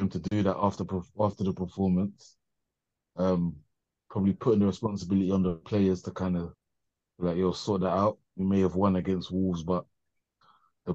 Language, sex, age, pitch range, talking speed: English, male, 30-49, 90-110 Hz, 170 wpm